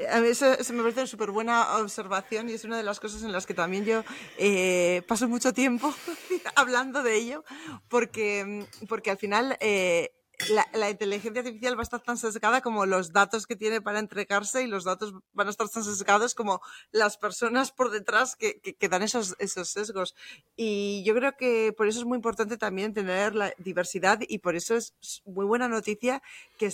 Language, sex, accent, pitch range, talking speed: Spanish, female, Spanish, 195-235 Hz, 200 wpm